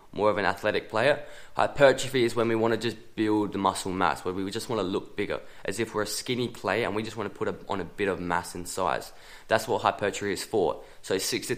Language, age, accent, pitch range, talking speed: English, 20-39, Australian, 105-125 Hz, 260 wpm